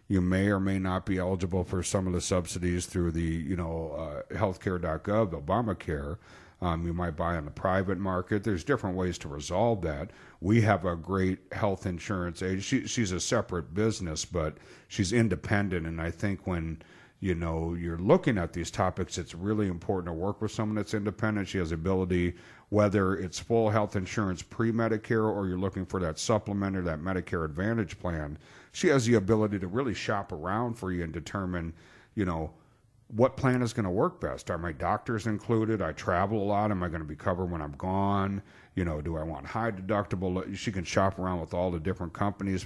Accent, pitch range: American, 85-105 Hz